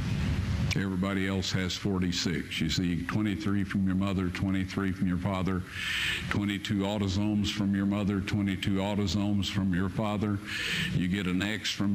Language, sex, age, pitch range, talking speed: Slovak, male, 60-79, 90-105 Hz, 145 wpm